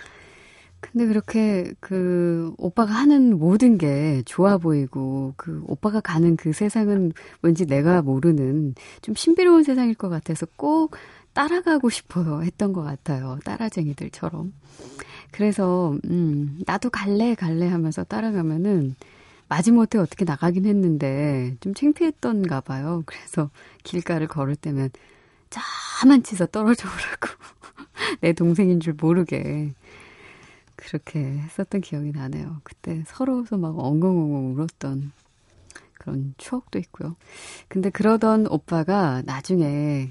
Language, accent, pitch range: Korean, native, 140-195 Hz